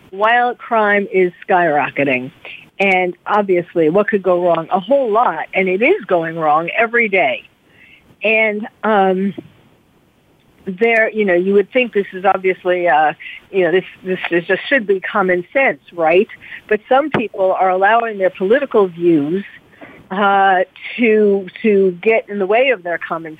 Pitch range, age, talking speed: 185-230 Hz, 50-69, 155 wpm